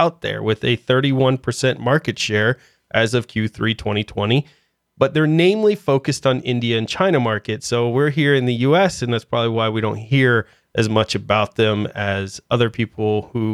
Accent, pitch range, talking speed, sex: American, 110-140 Hz, 180 wpm, male